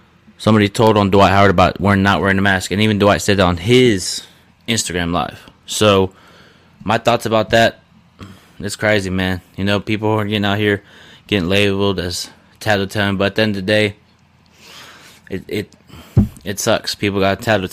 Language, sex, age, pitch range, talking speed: English, male, 20-39, 95-110 Hz, 180 wpm